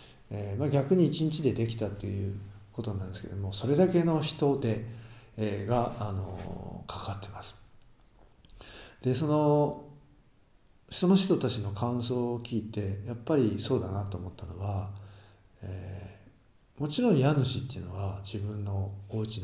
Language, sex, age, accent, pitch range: Japanese, male, 50-69, native, 100-135 Hz